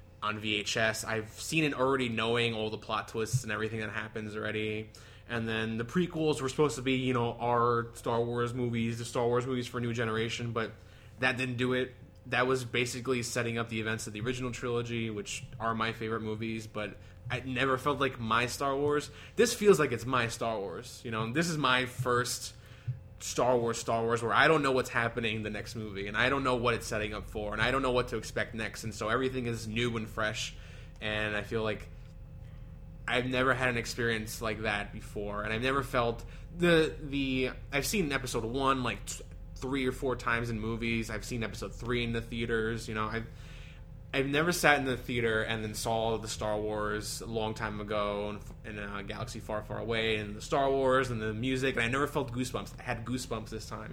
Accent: American